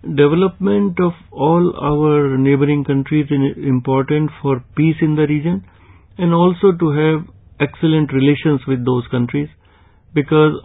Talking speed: 130 wpm